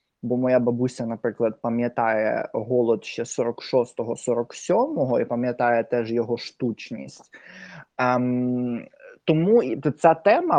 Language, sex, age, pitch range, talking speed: Ukrainian, male, 20-39, 125-160 Hz, 95 wpm